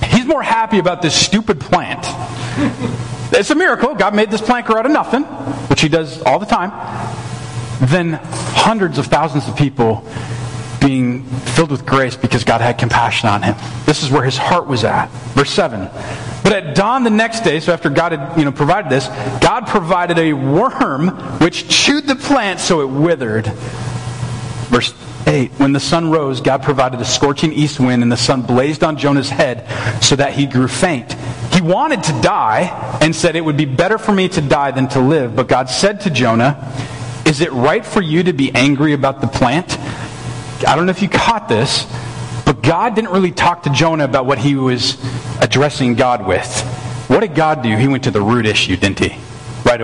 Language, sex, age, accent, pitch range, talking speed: English, male, 40-59, American, 120-165 Hz, 195 wpm